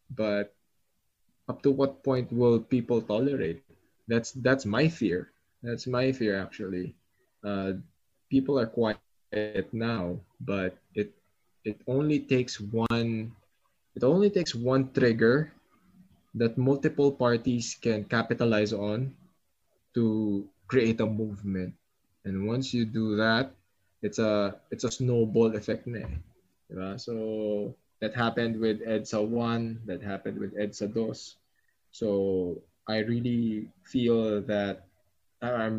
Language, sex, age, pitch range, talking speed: English, male, 20-39, 105-120 Hz, 115 wpm